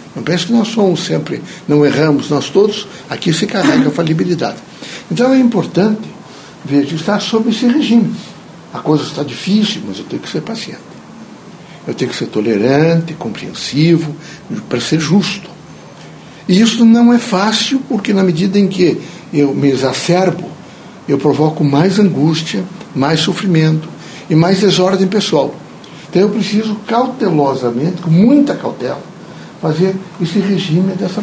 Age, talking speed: 60-79, 145 wpm